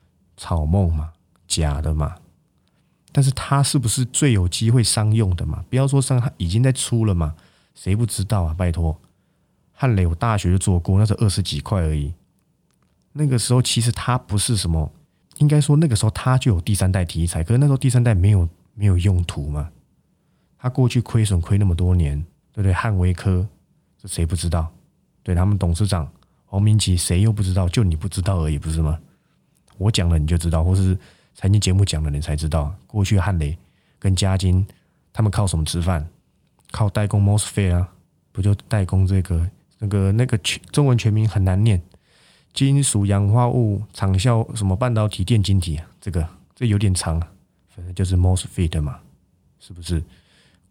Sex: male